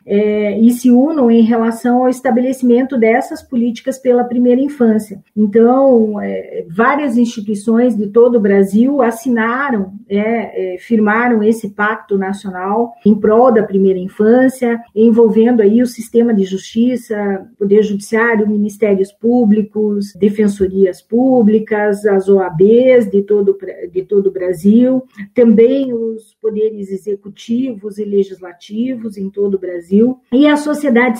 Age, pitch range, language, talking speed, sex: 40-59, 205-250 Hz, Portuguese, 115 wpm, female